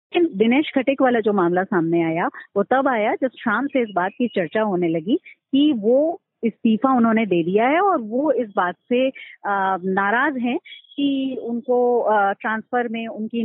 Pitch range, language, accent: 195-265 Hz, Hindi, native